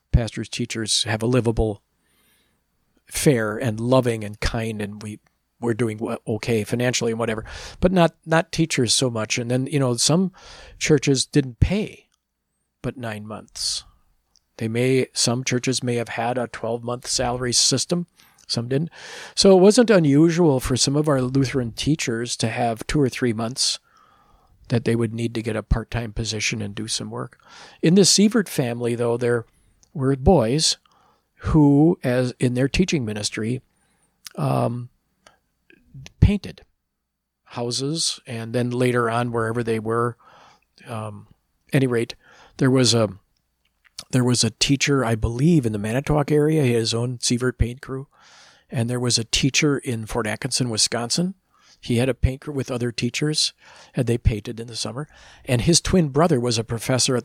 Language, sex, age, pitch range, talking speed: English, male, 50-69, 115-140 Hz, 165 wpm